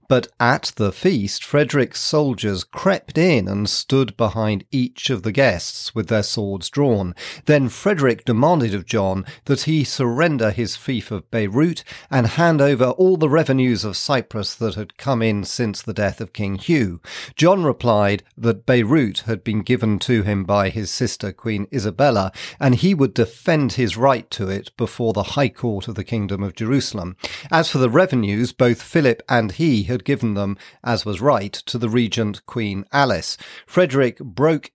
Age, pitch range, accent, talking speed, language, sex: 40-59, 100-135 Hz, British, 175 wpm, English, male